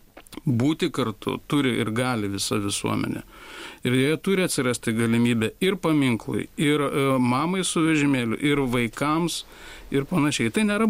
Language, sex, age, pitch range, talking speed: English, male, 50-69, 130-155 Hz, 130 wpm